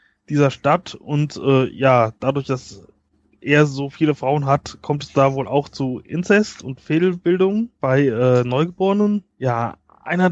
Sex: male